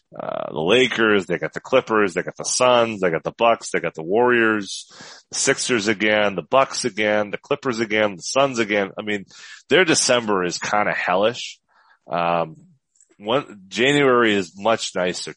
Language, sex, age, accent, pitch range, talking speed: English, male, 30-49, American, 90-115 Hz, 170 wpm